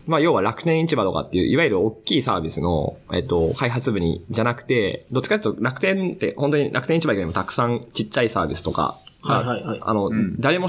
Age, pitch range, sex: 20-39, 100-150 Hz, male